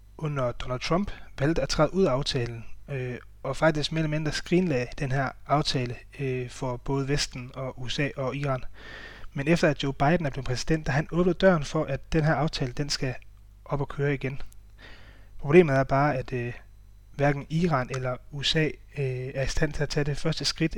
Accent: native